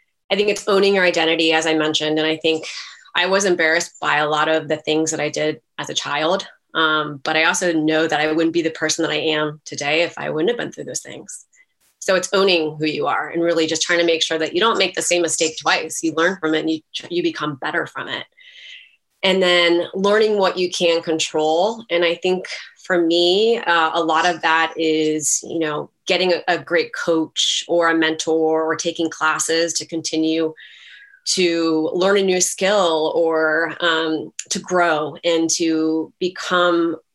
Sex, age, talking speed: female, 20-39, 205 wpm